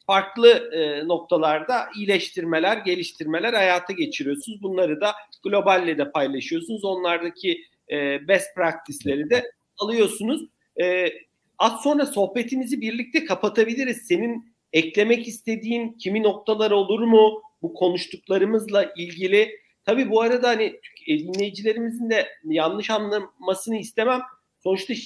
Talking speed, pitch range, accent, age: 105 wpm, 175-220 Hz, native, 50-69